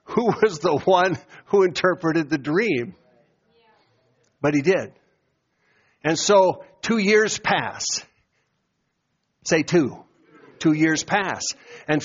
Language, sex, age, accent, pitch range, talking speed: English, male, 60-79, American, 170-225 Hz, 110 wpm